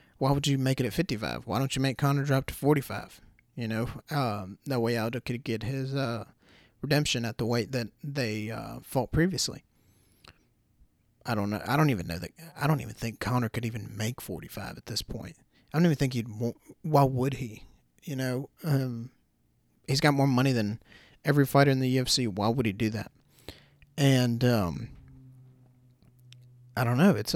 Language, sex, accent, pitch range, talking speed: English, male, American, 115-140 Hz, 190 wpm